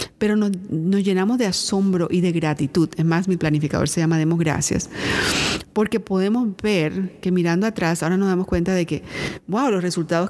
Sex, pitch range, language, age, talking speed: female, 150-190 Hz, Spanish, 40-59, 185 wpm